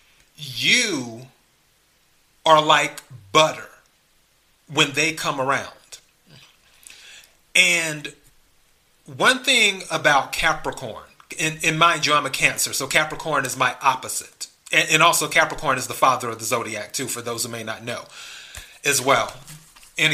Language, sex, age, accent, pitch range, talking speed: English, male, 30-49, American, 130-160 Hz, 130 wpm